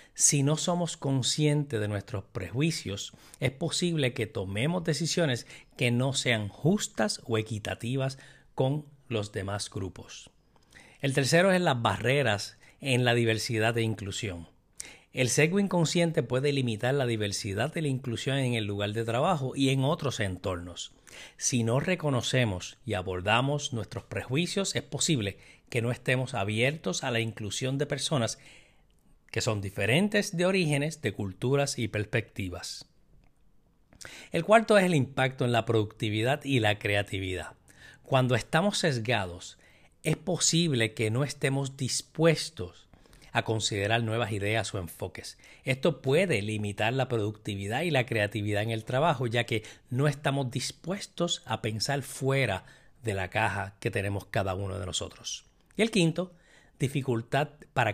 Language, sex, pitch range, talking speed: Spanish, male, 105-145 Hz, 140 wpm